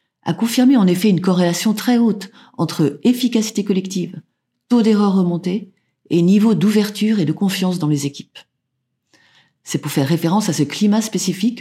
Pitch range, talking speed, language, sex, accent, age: 155-190 Hz, 160 wpm, French, female, French, 40-59